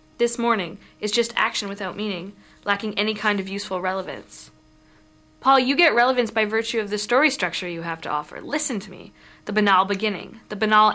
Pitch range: 185-220 Hz